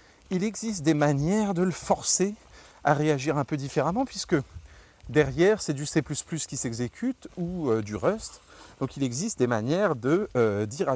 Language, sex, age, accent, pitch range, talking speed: French, male, 30-49, French, 105-150 Hz, 175 wpm